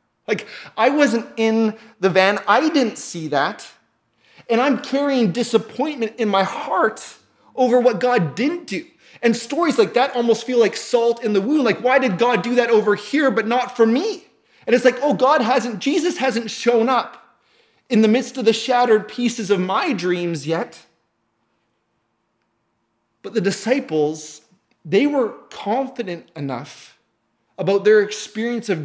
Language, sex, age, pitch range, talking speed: English, male, 30-49, 190-245 Hz, 160 wpm